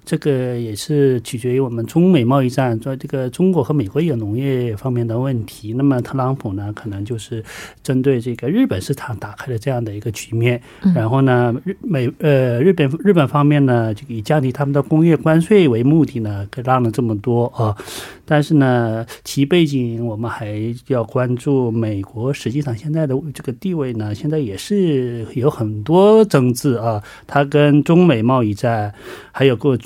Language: Korean